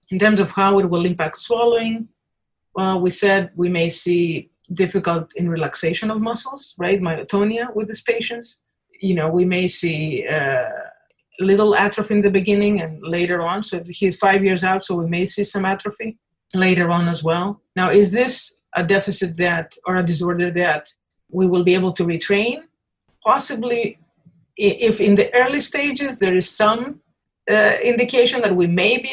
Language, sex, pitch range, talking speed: English, female, 175-215 Hz, 175 wpm